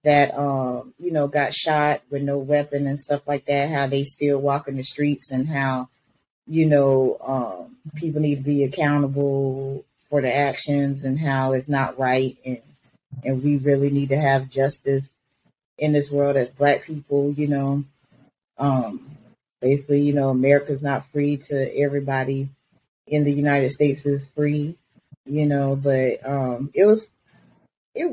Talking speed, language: 160 wpm, English